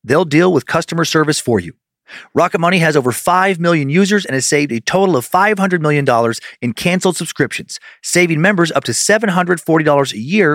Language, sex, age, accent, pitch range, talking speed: English, male, 40-59, American, 125-180 Hz, 180 wpm